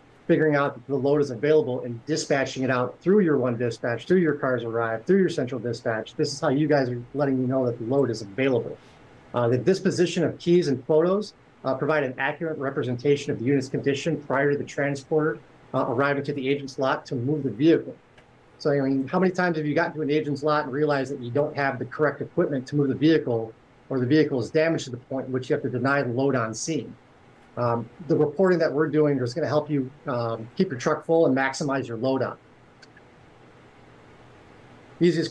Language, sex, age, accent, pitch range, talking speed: English, male, 30-49, American, 130-155 Hz, 225 wpm